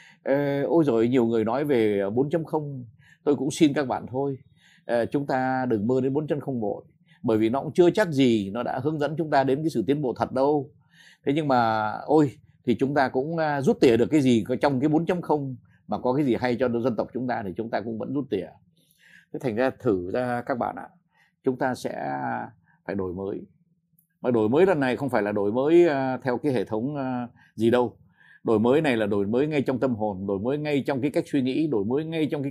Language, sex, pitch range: Vietnamese, male, 115-155 Hz